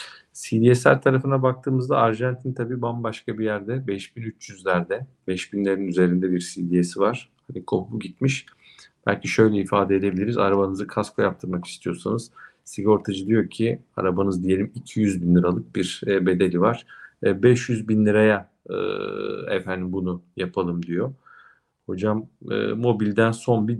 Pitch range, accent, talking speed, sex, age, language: 90-115 Hz, native, 120 wpm, male, 50-69, Turkish